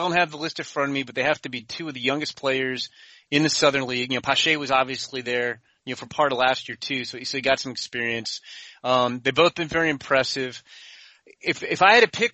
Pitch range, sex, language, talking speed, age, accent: 135-175 Hz, male, English, 265 wpm, 30-49, American